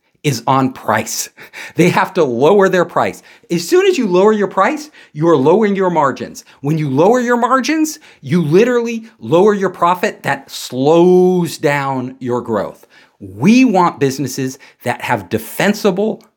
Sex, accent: male, American